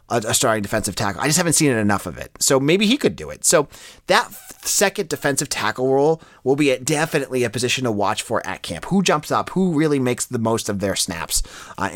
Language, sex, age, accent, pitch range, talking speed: English, male, 30-49, American, 110-160 Hz, 225 wpm